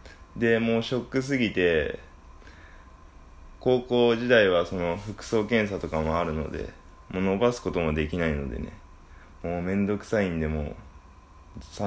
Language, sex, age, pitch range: Japanese, male, 20-39, 75-100 Hz